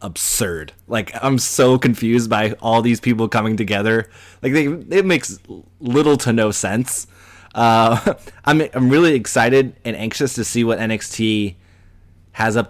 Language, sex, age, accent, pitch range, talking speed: English, male, 20-39, American, 95-115 Hz, 145 wpm